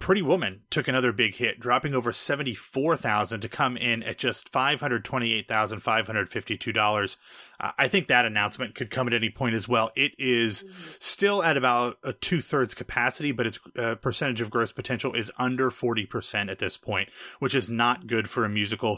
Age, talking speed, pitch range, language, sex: 30-49, 170 wpm, 110-130 Hz, English, male